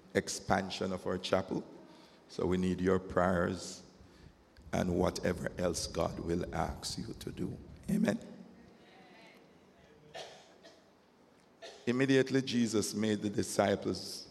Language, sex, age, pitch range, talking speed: English, male, 60-79, 95-110 Hz, 100 wpm